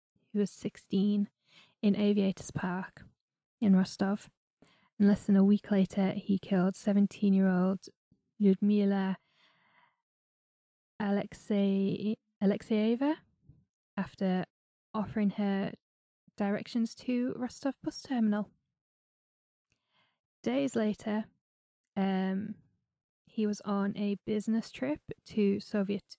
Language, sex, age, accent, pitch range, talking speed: English, female, 10-29, British, 190-215 Hz, 90 wpm